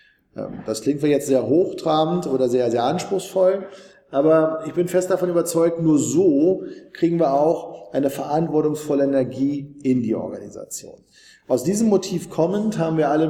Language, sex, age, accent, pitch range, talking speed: German, male, 40-59, German, 130-165 Hz, 155 wpm